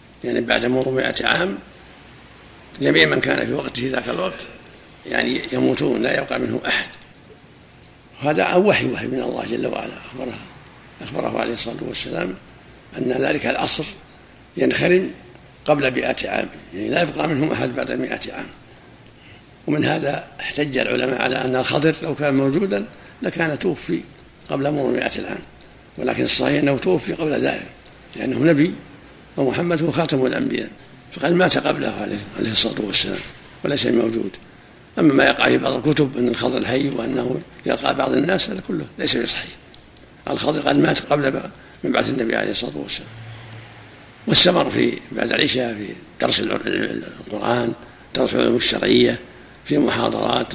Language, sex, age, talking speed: Arabic, male, 60-79, 145 wpm